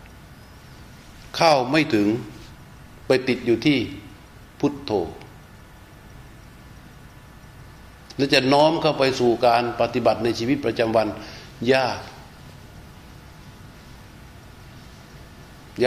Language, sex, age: Thai, male, 60-79